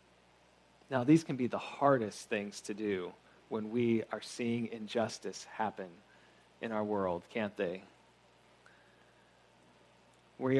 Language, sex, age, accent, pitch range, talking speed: English, male, 40-59, American, 120-165 Hz, 120 wpm